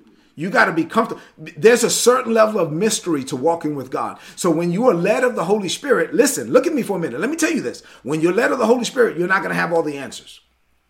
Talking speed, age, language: 280 wpm, 40-59, English